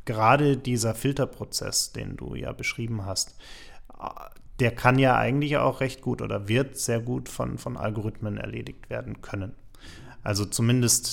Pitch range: 105-125 Hz